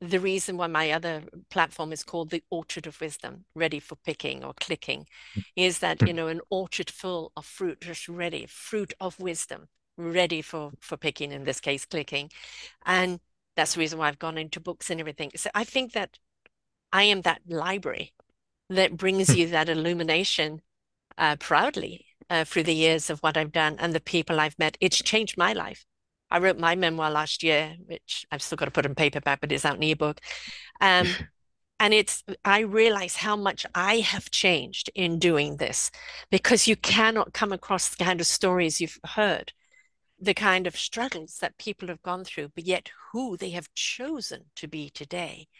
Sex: female